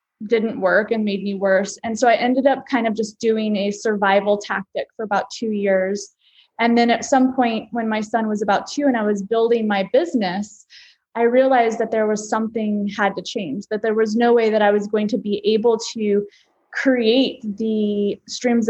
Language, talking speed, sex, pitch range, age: English, 205 wpm, female, 205-235 Hz, 20-39